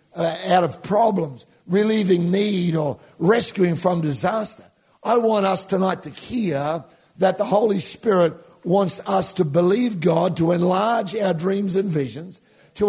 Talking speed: 150 wpm